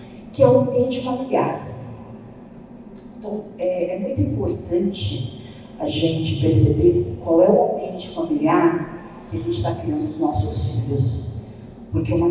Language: Portuguese